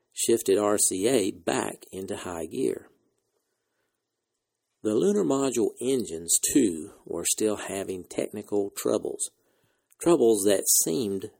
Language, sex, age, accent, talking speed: English, male, 50-69, American, 100 wpm